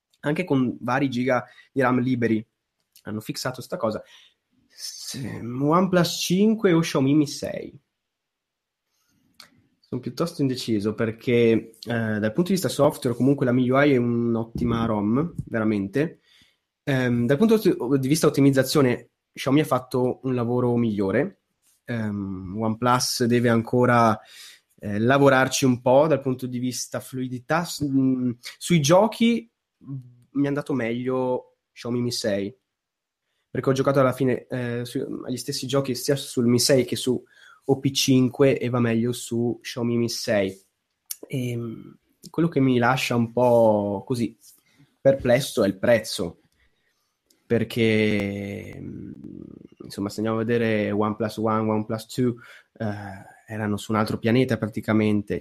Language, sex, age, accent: Italian, male, 20-39, native